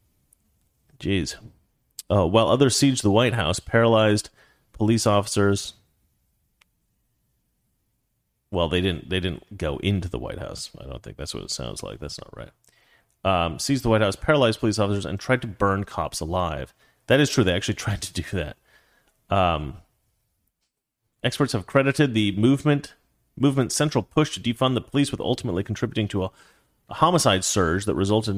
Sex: male